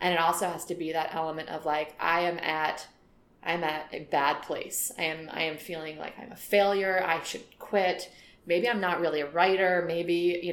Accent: American